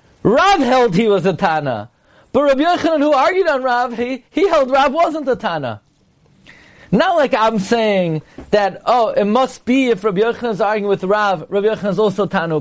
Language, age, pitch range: English, 30-49, 170-220 Hz